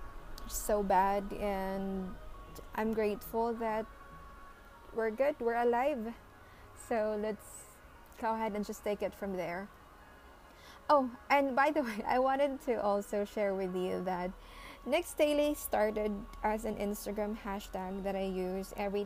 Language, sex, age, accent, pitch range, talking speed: English, female, 20-39, Filipino, 195-225 Hz, 140 wpm